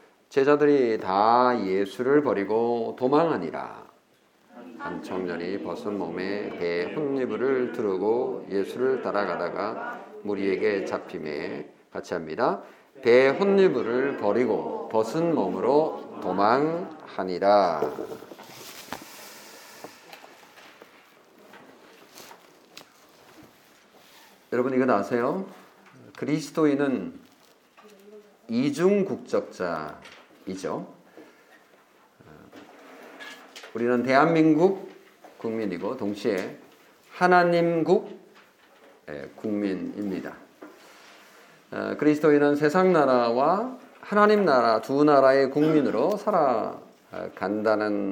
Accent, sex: native, male